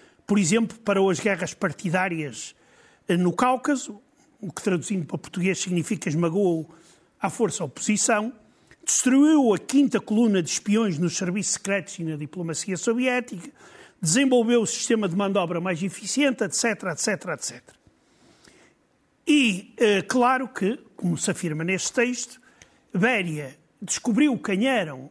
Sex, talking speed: male, 135 wpm